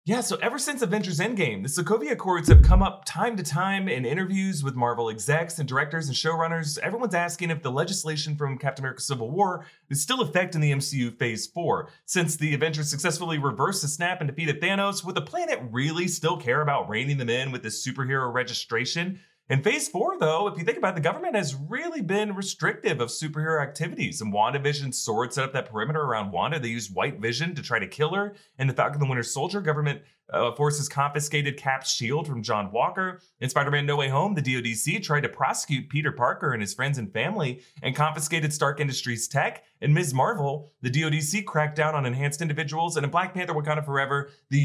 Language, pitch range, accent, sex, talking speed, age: English, 130-170 Hz, American, male, 210 wpm, 30-49